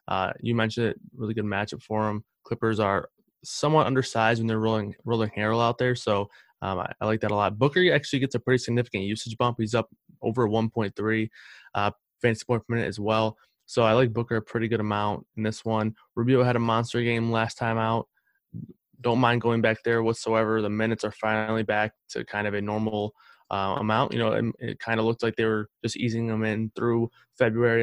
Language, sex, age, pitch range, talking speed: English, male, 20-39, 110-120 Hz, 215 wpm